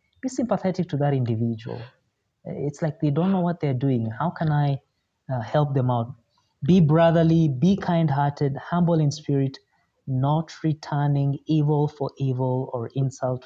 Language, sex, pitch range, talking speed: English, male, 125-155 Hz, 150 wpm